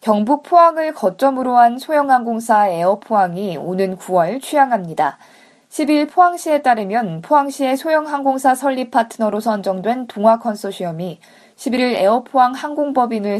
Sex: female